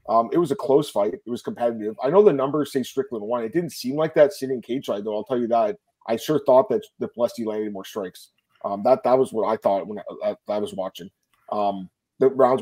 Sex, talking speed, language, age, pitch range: male, 255 wpm, English, 30-49, 120-155 Hz